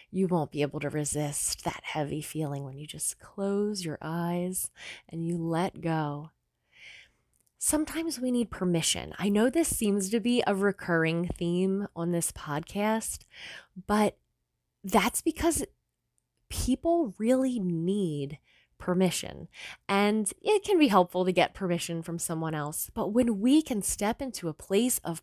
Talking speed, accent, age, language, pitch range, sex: 150 wpm, American, 20-39, English, 170-210 Hz, female